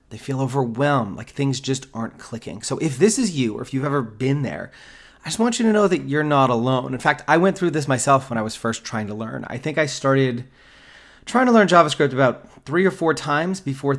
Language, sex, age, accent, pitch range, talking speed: English, male, 30-49, American, 115-145 Hz, 245 wpm